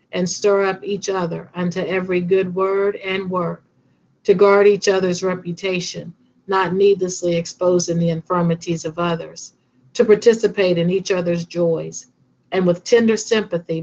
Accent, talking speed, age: American, 145 wpm, 50-69